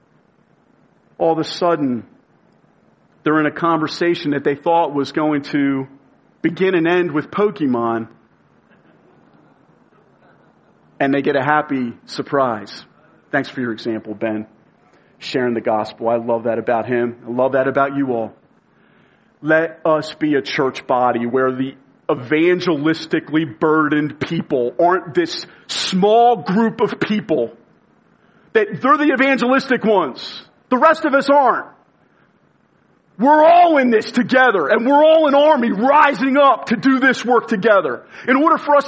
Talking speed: 140 wpm